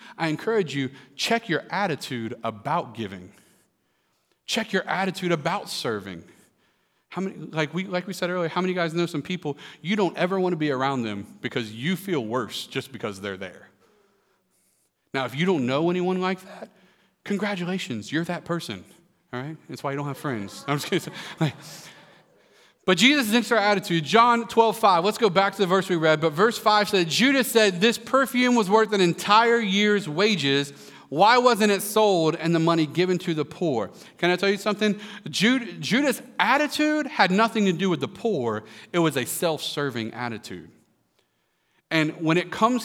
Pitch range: 145-200 Hz